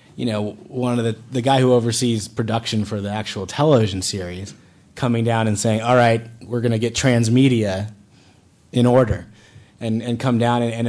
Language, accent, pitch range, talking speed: English, American, 105-125 Hz, 170 wpm